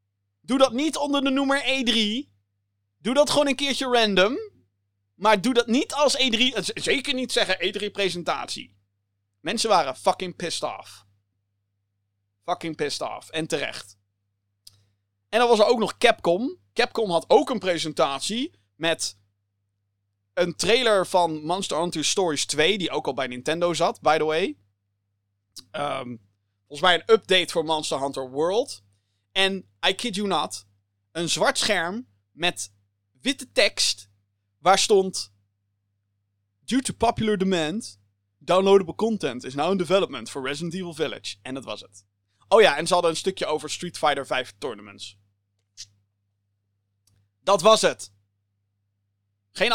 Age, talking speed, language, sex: 30-49, 140 wpm, Dutch, male